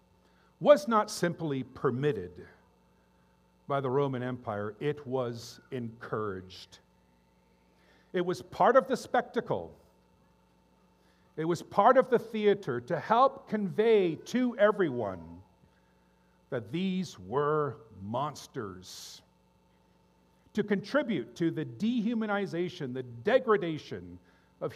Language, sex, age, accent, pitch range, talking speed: English, male, 50-69, American, 120-180 Hz, 95 wpm